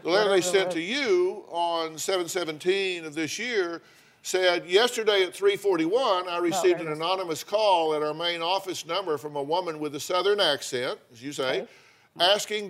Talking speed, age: 170 wpm, 50-69